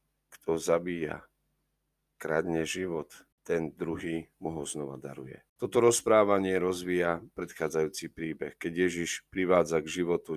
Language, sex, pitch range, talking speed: Slovak, male, 80-100 Hz, 115 wpm